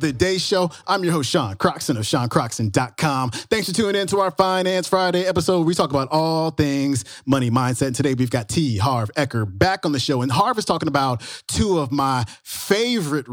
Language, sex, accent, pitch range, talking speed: English, male, American, 115-165 Hz, 205 wpm